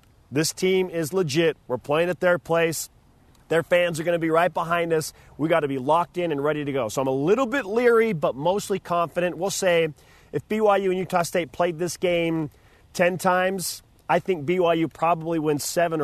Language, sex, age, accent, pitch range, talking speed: English, male, 40-59, American, 145-180 Hz, 205 wpm